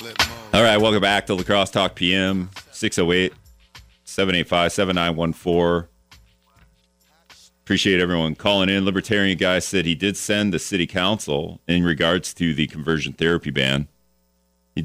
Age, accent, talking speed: 40-59, American, 120 wpm